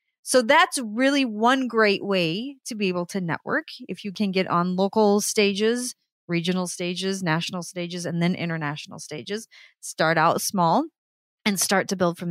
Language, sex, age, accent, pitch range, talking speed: English, female, 30-49, American, 180-235 Hz, 165 wpm